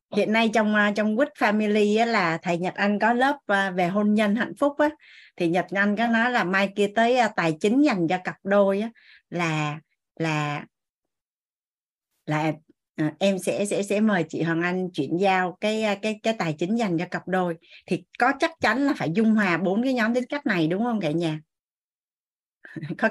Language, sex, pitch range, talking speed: Vietnamese, female, 180-250 Hz, 190 wpm